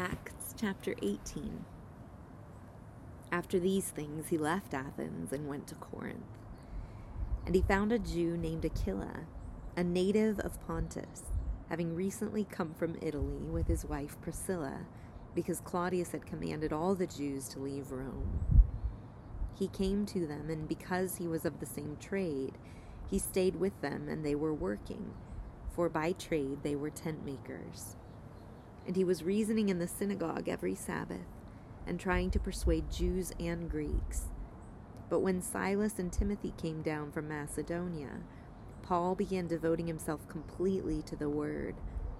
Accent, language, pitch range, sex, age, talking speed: American, English, 130-180 Hz, female, 30-49, 145 wpm